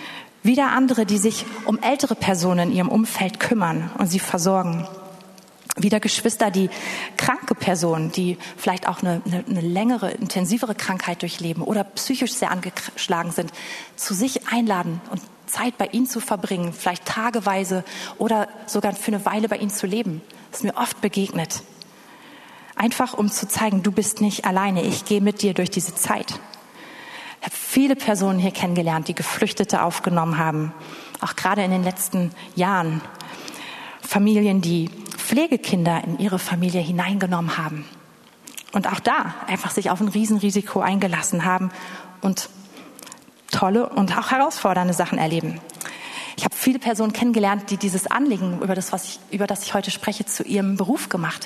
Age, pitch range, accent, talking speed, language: 30-49, 185-220 Hz, German, 160 wpm, German